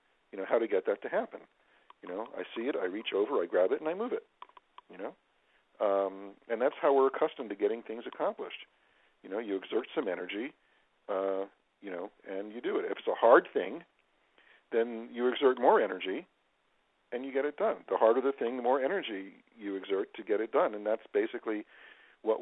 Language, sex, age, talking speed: English, male, 50-69, 215 wpm